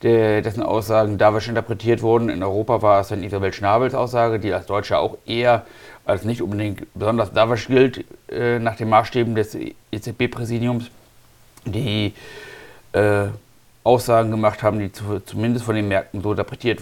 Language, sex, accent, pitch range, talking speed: German, male, German, 100-115 Hz, 155 wpm